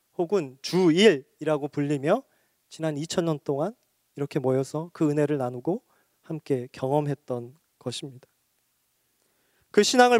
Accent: native